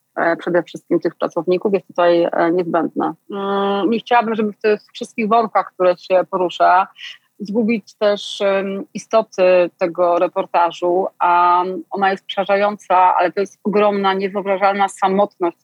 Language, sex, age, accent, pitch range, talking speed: Polish, female, 30-49, native, 180-205 Hz, 125 wpm